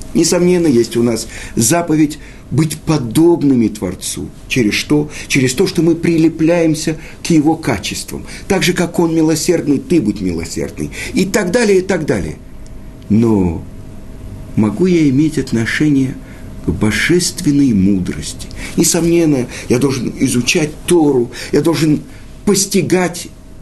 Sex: male